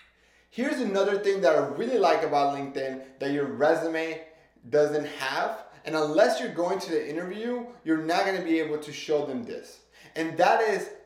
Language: English